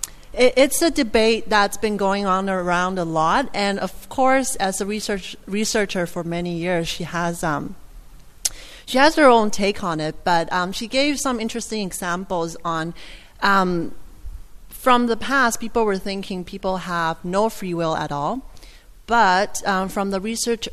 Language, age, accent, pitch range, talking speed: English, 30-49, American, 175-225 Hz, 165 wpm